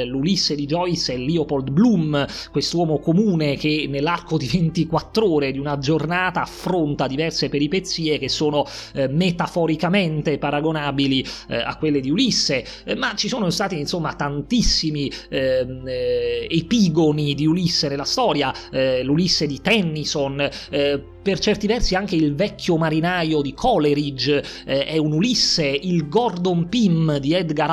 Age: 30-49